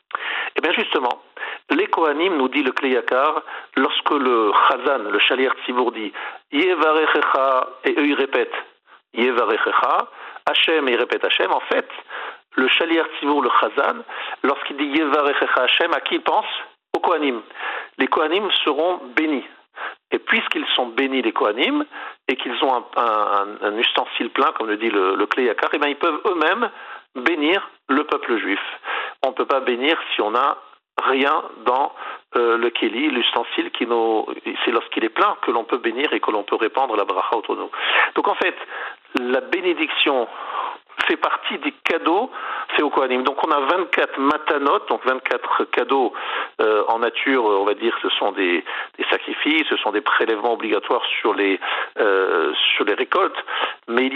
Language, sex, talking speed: French, male, 180 wpm